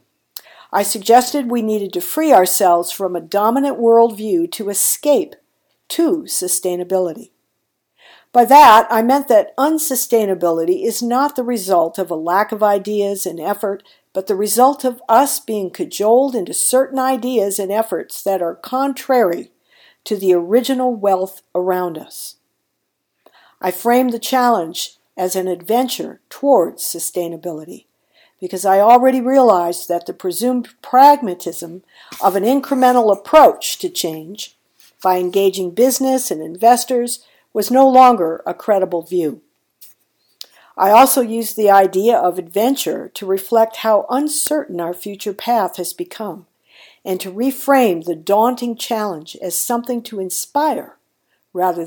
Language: English